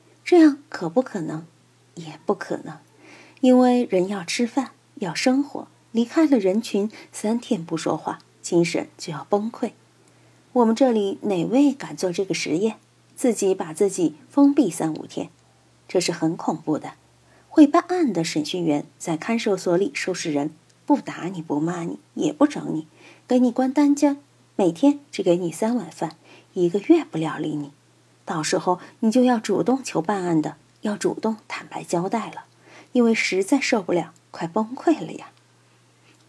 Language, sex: Chinese, female